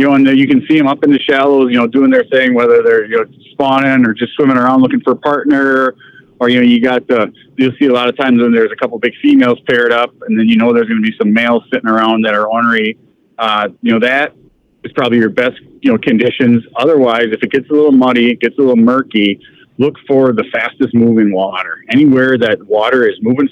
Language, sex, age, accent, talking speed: English, male, 40-59, American, 255 wpm